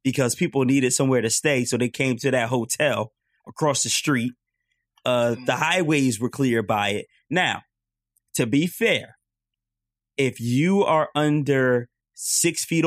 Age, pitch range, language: 20-39, 120-150 Hz, English